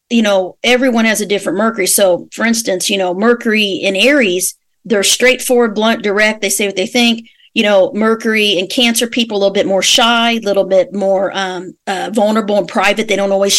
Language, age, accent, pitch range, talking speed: English, 40-59, American, 195-240 Hz, 210 wpm